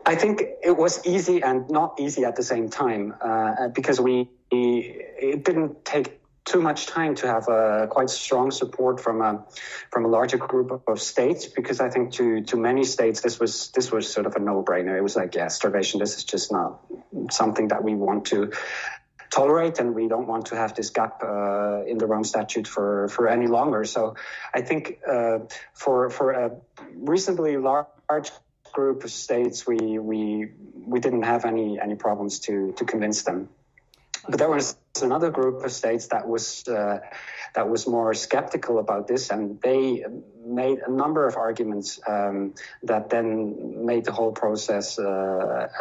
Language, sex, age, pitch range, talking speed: English, male, 30-49, 110-130 Hz, 185 wpm